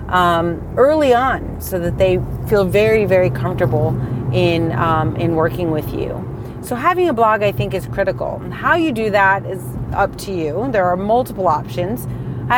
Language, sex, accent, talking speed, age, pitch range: English, female, American, 175 wpm, 30-49, 165-225 Hz